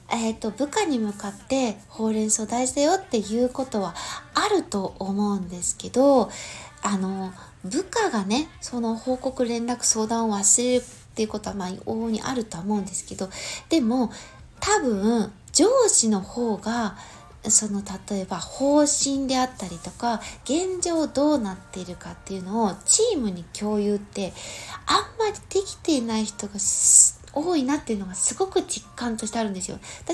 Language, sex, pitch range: Japanese, female, 220-330 Hz